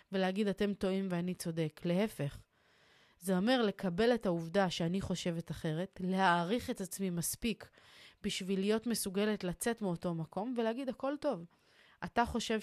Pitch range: 175-210 Hz